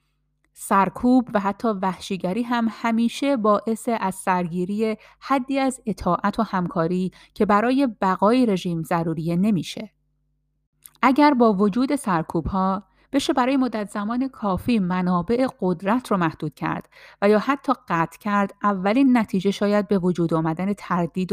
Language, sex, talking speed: Persian, female, 130 wpm